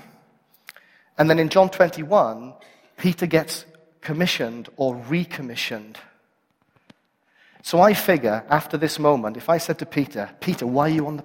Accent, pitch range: British, 125-180 Hz